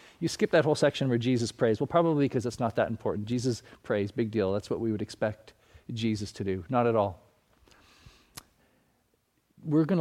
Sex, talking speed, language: male, 190 wpm, English